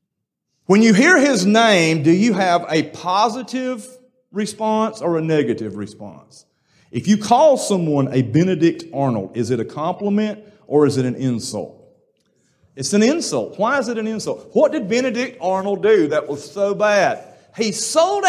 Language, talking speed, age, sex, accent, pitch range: English, 165 wpm, 40-59, male, American, 195-265 Hz